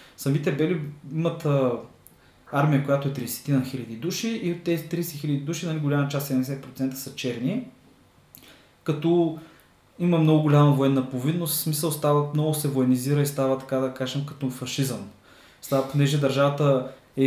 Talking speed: 155 wpm